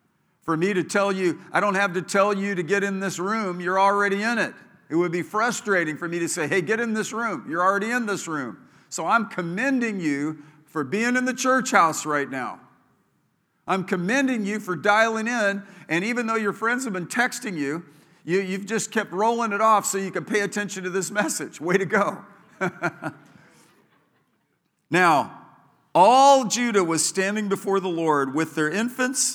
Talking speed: 190 wpm